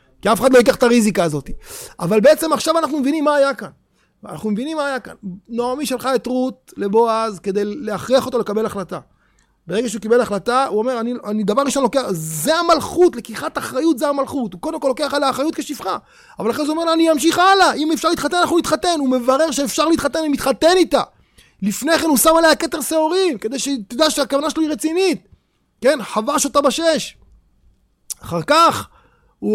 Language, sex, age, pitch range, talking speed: Hebrew, male, 30-49, 215-300 Hz, 165 wpm